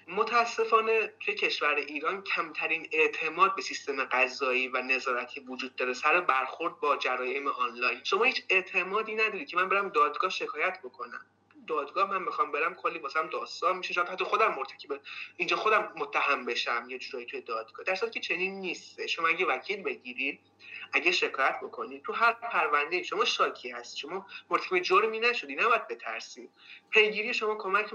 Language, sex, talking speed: English, male, 165 wpm